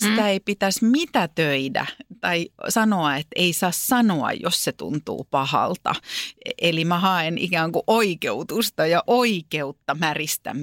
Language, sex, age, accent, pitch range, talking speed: Finnish, female, 30-49, native, 140-195 Hz, 130 wpm